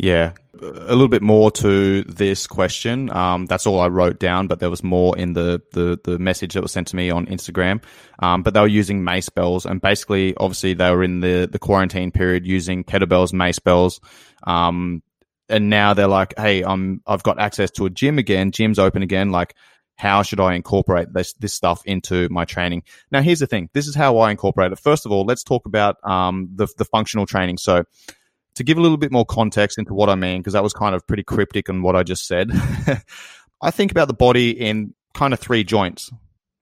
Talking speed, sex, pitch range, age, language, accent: 220 wpm, male, 90-105 Hz, 20-39, English, Australian